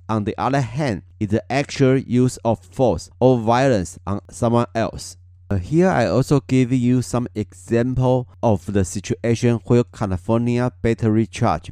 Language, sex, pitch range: Chinese, male, 100-130 Hz